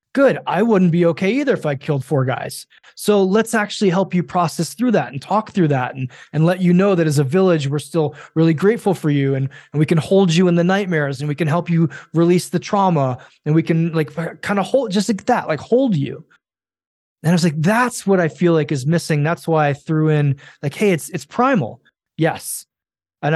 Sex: male